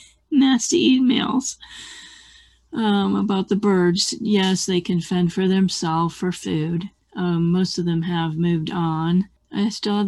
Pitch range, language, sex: 170-210 Hz, English, female